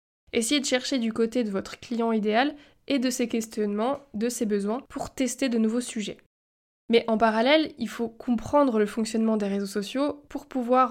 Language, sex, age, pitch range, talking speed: French, female, 20-39, 215-255 Hz, 185 wpm